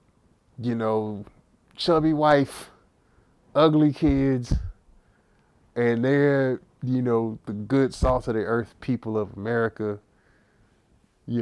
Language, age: English, 20-39